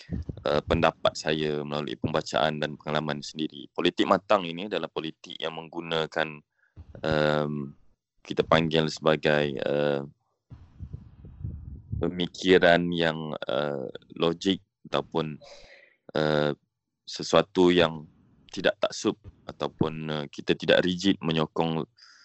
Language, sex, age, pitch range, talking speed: Malay, male, 20-39, 75-90 Hz, 95 wpm